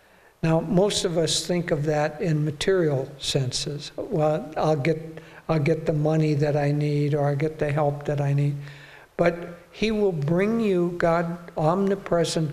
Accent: American